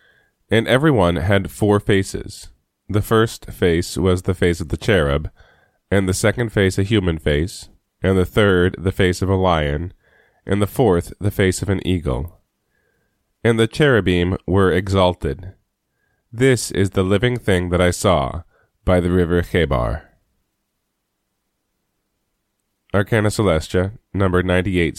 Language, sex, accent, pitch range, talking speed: English, male, American, 90-110 Hz, 140 wpm